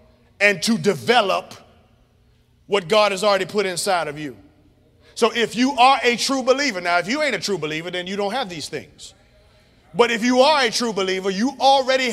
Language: English